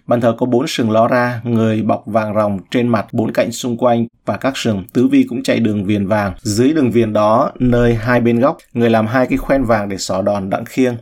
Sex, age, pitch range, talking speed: male, 20-39, 110-125 Hz, 250 wpm